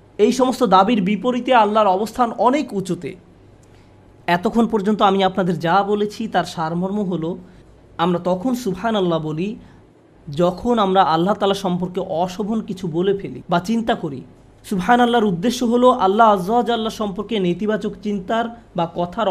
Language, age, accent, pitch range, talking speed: Bengali, 30-49, native, 180-235 Hz, 140 wpm